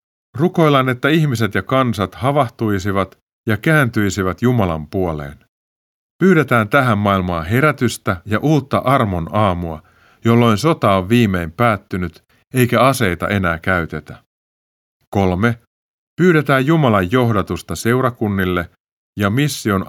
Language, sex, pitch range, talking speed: Finnish, male, 90-130 Hz, 105 wpm